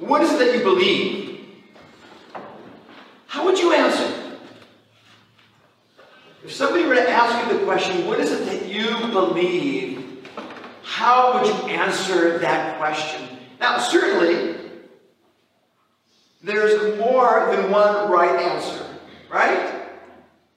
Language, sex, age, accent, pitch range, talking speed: English, male, 50-69, American, 205-300 Hz, 115 wpm